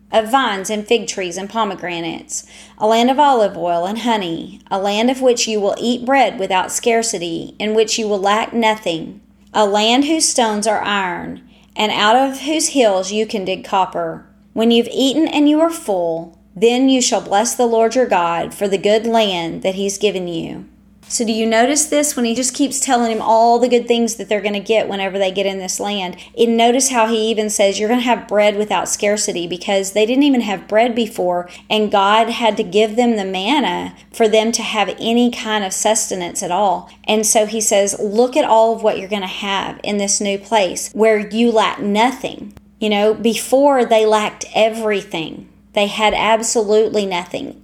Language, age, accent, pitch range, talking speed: English, 30-49, American, 200-235 Hz, 205 wpm